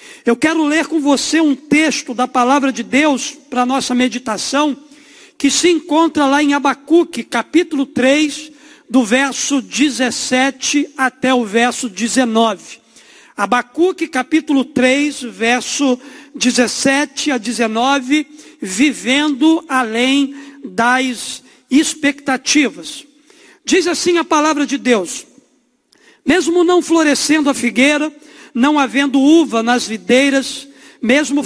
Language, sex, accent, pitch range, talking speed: Portuguese, male, Brazilian, 250-295 Hz, 110 wpm